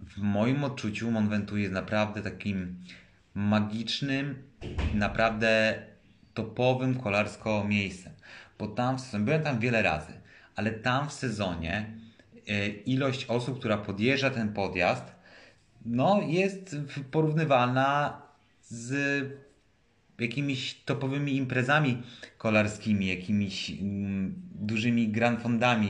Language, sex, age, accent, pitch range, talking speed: Polish, male, 30-49, native, 105-130 Hz, 95 wpm